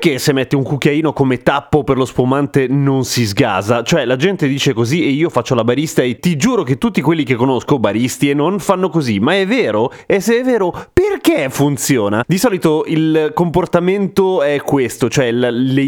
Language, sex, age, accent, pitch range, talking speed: Italian, male, 30-49, native, 125-175 Hz, 200 wpm